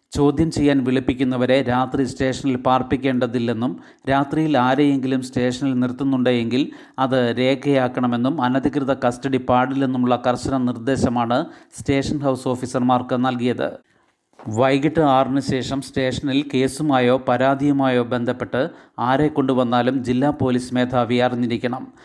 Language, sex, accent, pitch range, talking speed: Malayalam, male, native, 125-140 Hz, 90 wpm